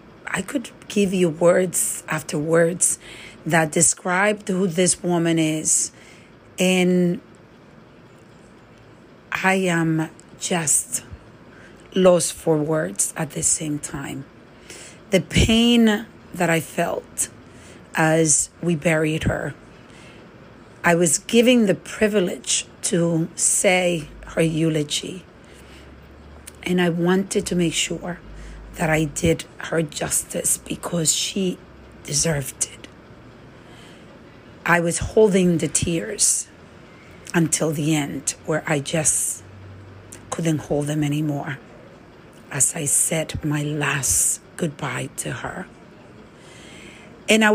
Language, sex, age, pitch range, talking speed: English, female, 40-59, 155-185 Hz, 105 wpm